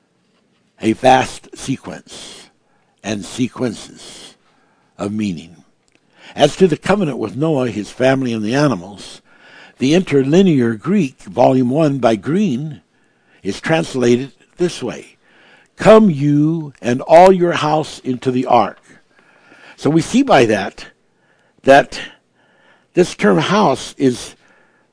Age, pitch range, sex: 60-79, 120-160 Hz, male